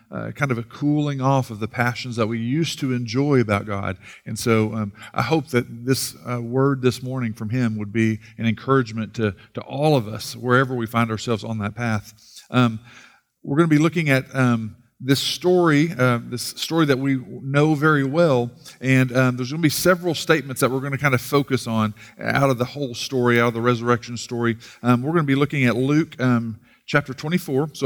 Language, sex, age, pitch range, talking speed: English, male, 40-59, 120-150 Hz, 220 wpm